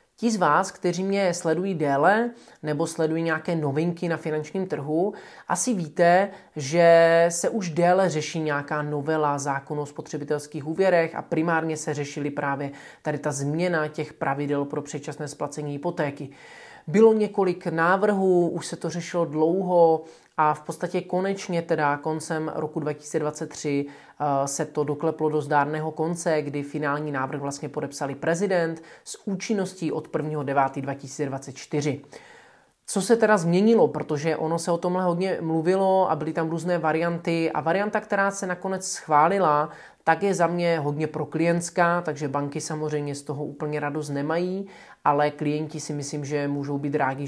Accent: native